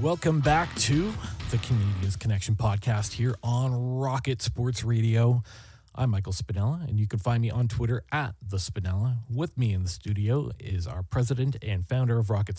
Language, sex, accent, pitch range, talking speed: English, male, American, 105-125 Hz, 175 wpm